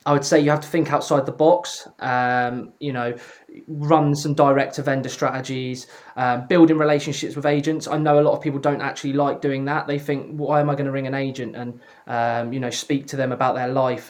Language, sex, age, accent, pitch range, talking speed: English, male, 20-39, British, 130-150 Hz, 235 wpm